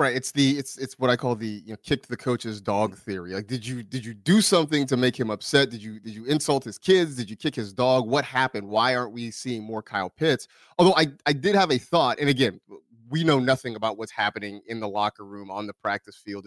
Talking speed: 260 wpm